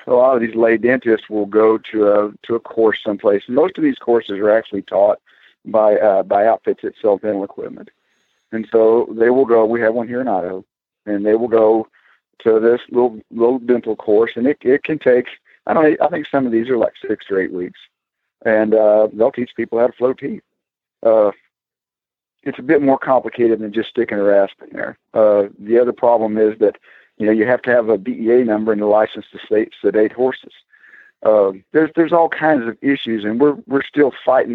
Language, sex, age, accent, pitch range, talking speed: English, male, 50-69, American, 105-125 Hz, 215 wpm